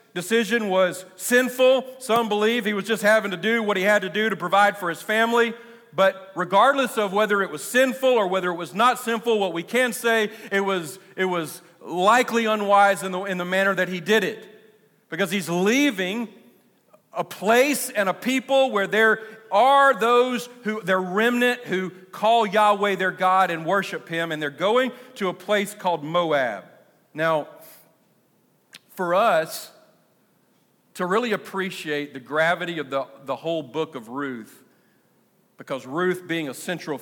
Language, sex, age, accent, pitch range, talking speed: English, male, 40-59, American, 165-220 Hz, 170 wpm